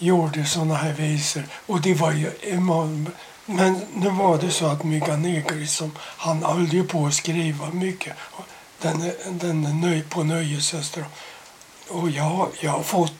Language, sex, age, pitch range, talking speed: Swedish, male, 60-79, 155-175 Hz, 155 wpm